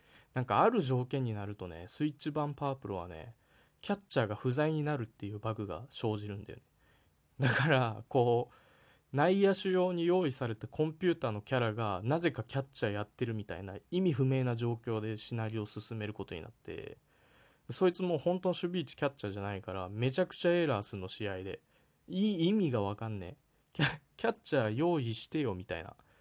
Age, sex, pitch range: 20-39, male, 105-155 Hz